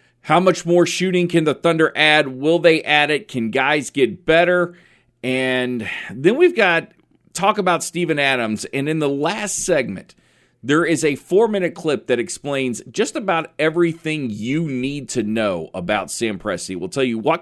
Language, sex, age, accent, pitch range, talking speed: English, male, 40-59, American, 120-160 Hz, 170 wpm